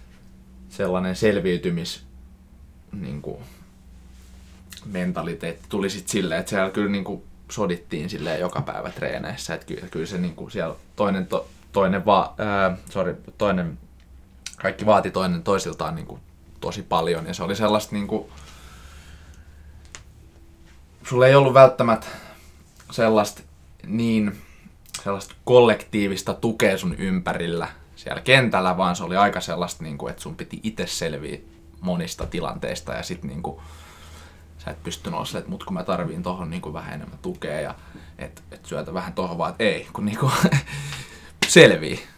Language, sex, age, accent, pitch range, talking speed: Finnish, male, 20-39, native, 75-100 Hz, 140 wpm